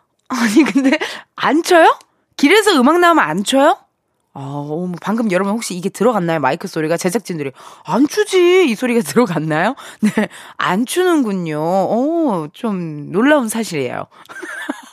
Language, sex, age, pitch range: Korean, female, 20-39, 190-315 Hz